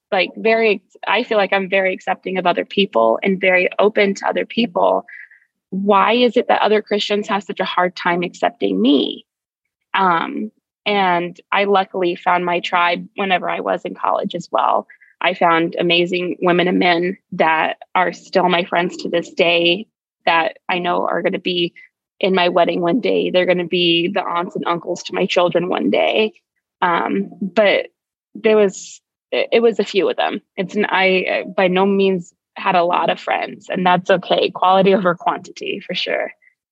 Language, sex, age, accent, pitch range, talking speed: English, female, 20-39, American, 175-205 Hz, 185 wpm